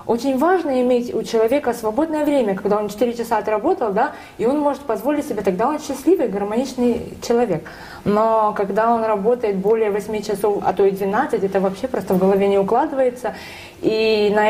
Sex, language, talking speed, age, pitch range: female, Russian, 180 wpm, 20-39, 205-250 Hz